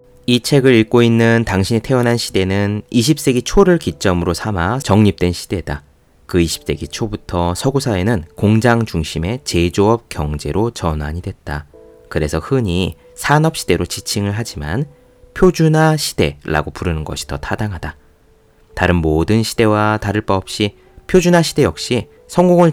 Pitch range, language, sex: 85-130 Hz, Korean, male